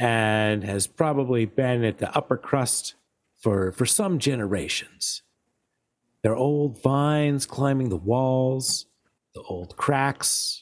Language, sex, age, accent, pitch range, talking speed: English, male, 40-59, American, 105-150 Hz, 125 wpm